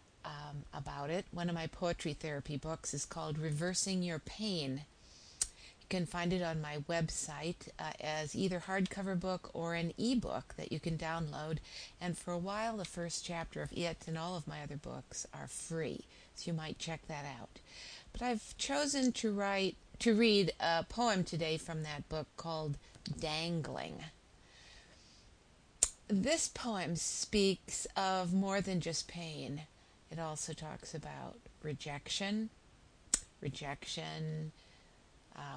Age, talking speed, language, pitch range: 50-69, 145 wpm, English, 150-175 Hz